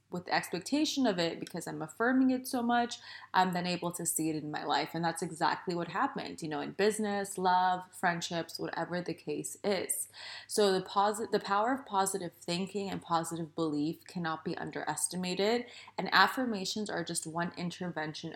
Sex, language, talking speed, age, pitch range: female, English, 175 wpm, 20-39, 165-215 Hz